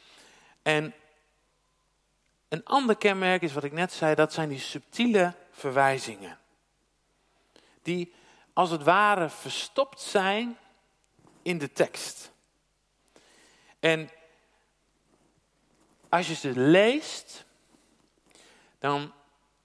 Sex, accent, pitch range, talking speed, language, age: male, Dutch, 155-205 Hz, 90 wpm, Dutch, 50-69